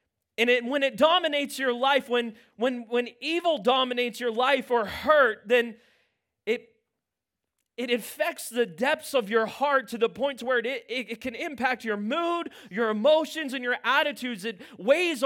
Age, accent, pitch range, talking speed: 30-49, American, 225-275 Hz, 165 wpm